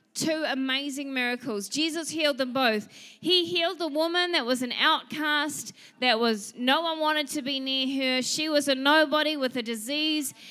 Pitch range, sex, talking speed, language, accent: 230-285 Hz, female, 175 wpm, English, Australian